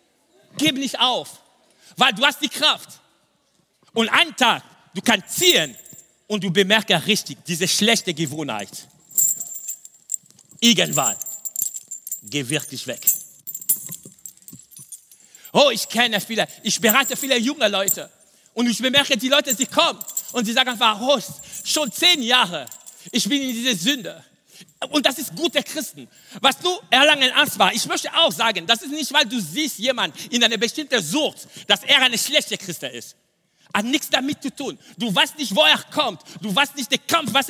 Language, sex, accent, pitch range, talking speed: German, male, German, 195-285 Hz, 165 wpm